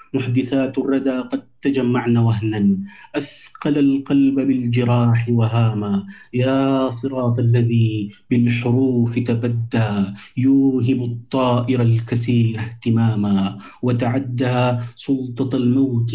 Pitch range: 110-130 Hz